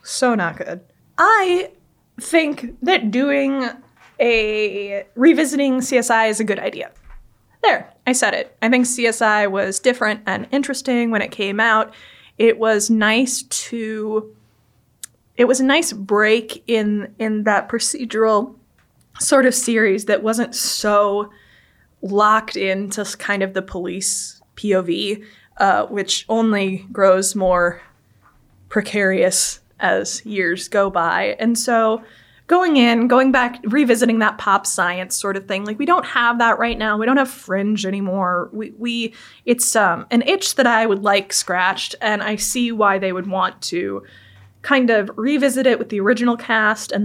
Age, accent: 20-39, American